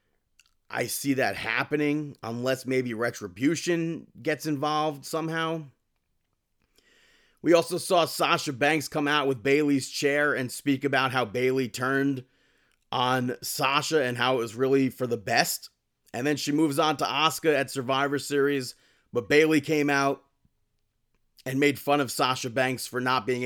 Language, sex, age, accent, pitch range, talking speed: English, male, 30-49, American, 120-145 Hz, 150 wpm